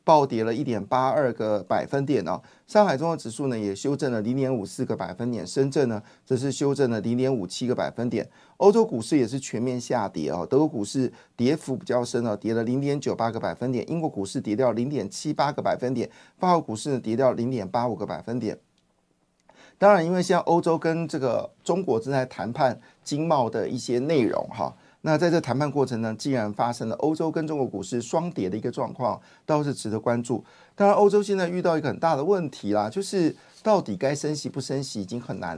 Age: 50-69